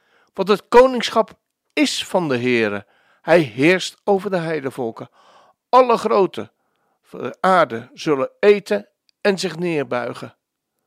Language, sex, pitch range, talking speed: Dutch, male, 145-210 Hz, 110 wpm